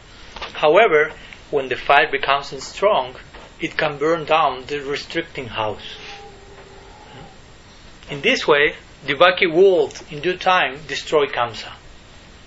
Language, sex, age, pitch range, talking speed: English, male, 30-49, 130-175 Hz, 110 wpm